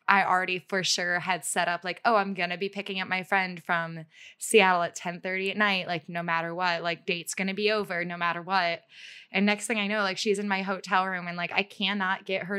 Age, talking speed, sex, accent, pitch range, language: 20-39, 255 wpm, female, American, 180-230 Hz, English